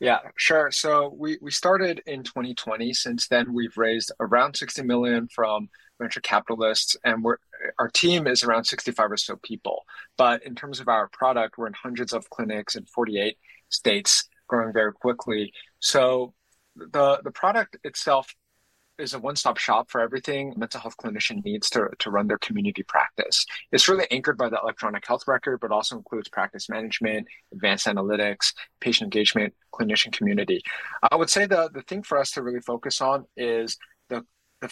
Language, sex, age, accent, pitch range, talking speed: English, male, 30-49, American, 115-140 Hz, 175 wpm